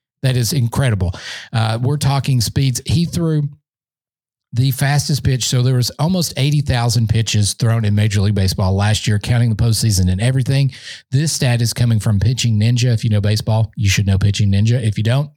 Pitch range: 110-145 Hz